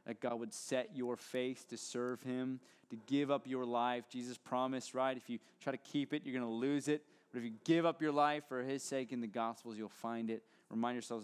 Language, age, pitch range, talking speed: English, 20-39, 115-170 Hz, 245 wpm